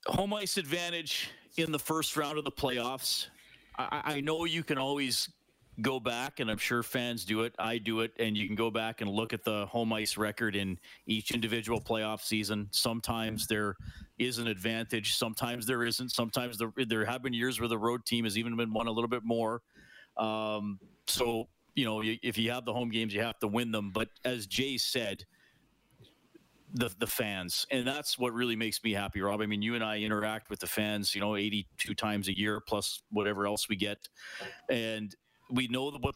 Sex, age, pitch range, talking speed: male, 40-59, 105-120 Hz, 205 wpm